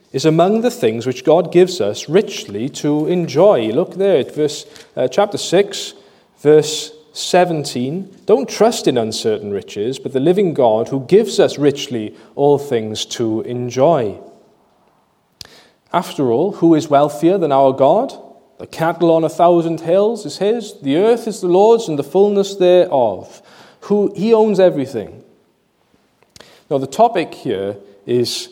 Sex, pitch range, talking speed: male, 130-180 Hz, 145 wpm